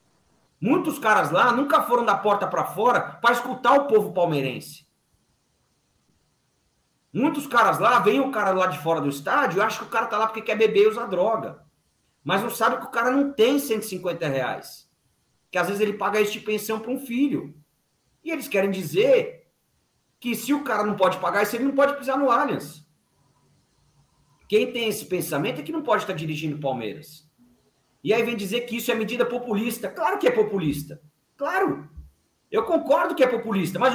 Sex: male